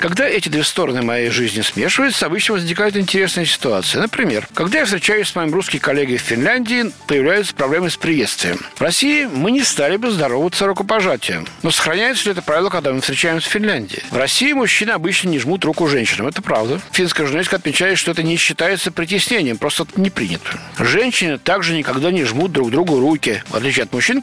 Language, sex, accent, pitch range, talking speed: Russian, male, native, 150-205 Hz, 190 wpm